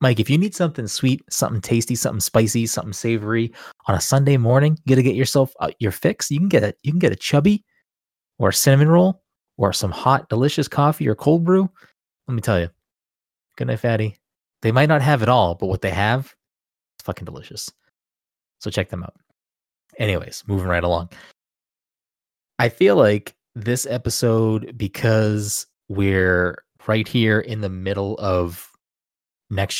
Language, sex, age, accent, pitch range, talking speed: English, male, 20-39, American, 90-120 Hz, 175 wpm